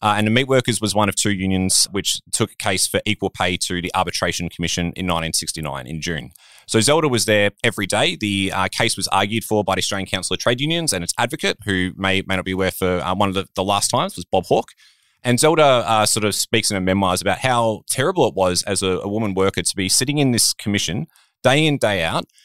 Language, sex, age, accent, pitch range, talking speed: English, male, 20-39, Australian, 90-110 Hz, 250 wpm